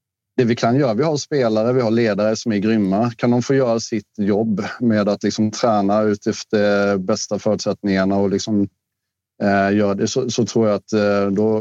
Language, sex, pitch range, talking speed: Swedish, male, 100-115 Hz, 195 wpm